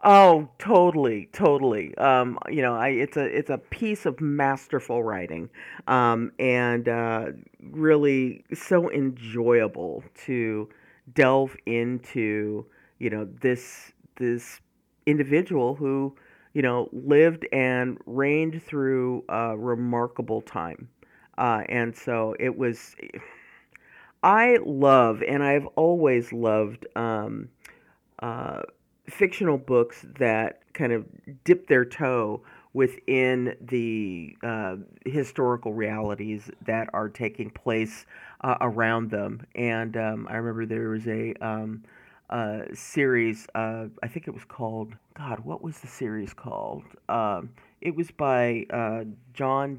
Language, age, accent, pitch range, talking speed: English, 40-59, American, 110-135 Hz, 120 wpm